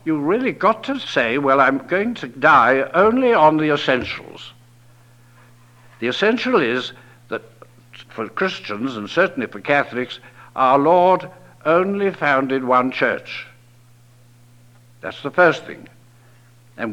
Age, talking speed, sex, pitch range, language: 60-79, 125 wpm, male, 120-160 Hz, English